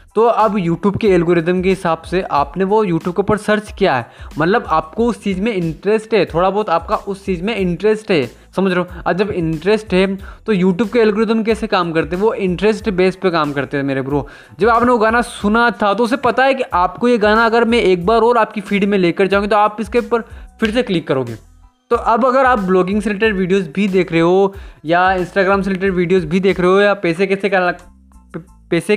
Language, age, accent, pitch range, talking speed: Hindi, 20-39, native, 175-215 Hz, 230 wpm